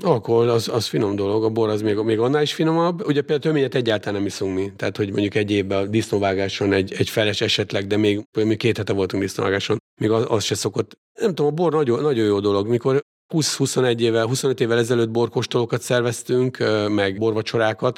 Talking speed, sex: 205 wpm, male